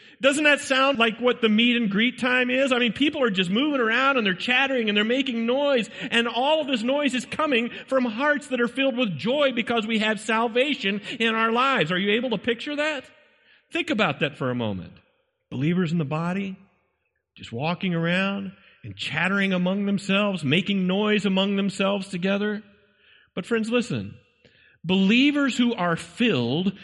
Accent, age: American, 40-59